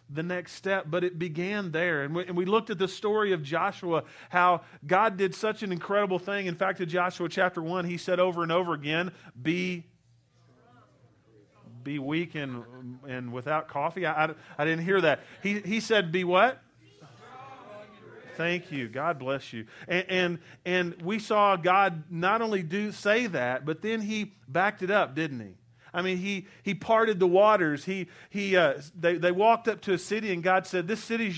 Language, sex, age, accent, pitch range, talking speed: English, male, 40-59, American, 165-200 Hz, 190 wpm